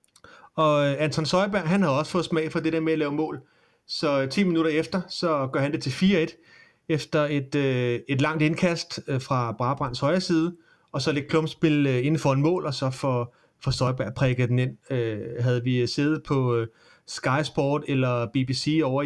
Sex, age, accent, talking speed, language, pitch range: male, 30-49, native, 180 wpm, Danish, 125-160 Hz